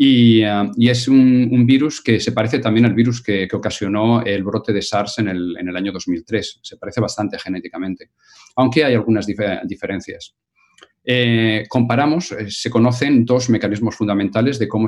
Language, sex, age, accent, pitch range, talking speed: Spanish, male, 40-59, Spanish, 100-125 Hz, 170 wpm